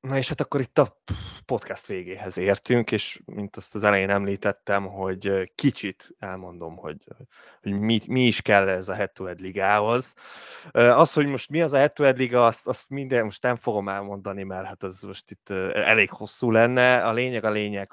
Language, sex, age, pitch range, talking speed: Hungarian, male, 20-39, 95-115 Hz, 195 wpm